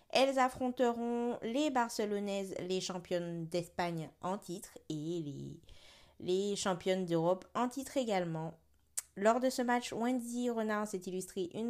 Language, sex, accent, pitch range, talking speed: French, female, French, 175-230 Hz, 135 wpm